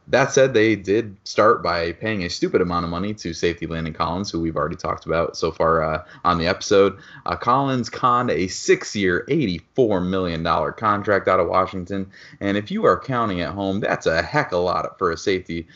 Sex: male